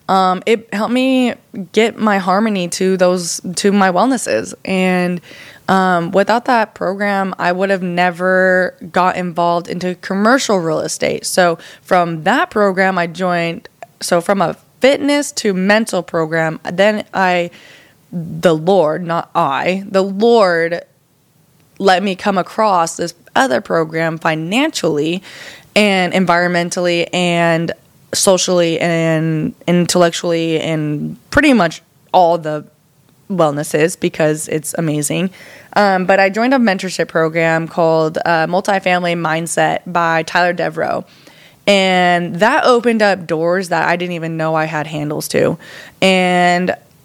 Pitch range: 165-190 Hz